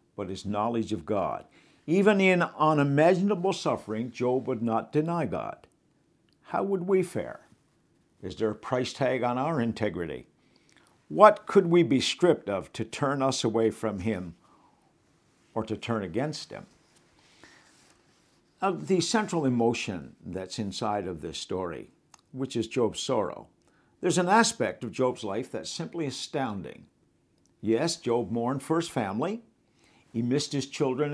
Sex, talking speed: male, 145 wpm